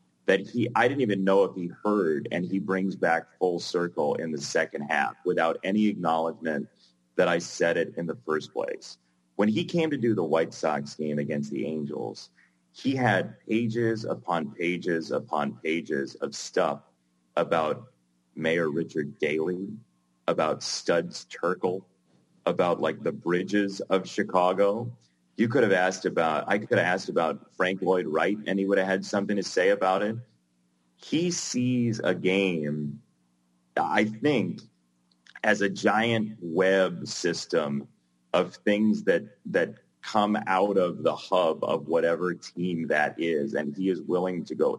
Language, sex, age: English, male, 30-49